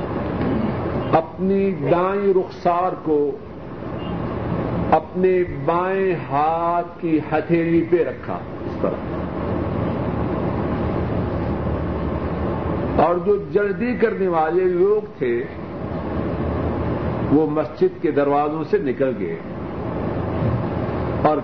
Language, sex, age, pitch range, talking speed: Urdu, male, 50-69, 130-175 Hz, 75 wpm